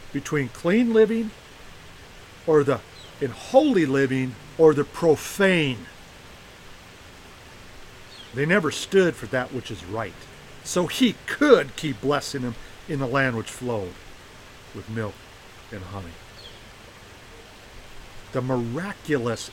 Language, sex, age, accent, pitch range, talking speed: English, male, 50-69, American, 100-145 Hz, 110 wpm